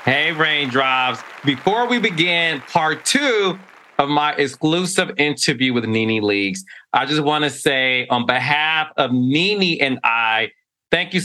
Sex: male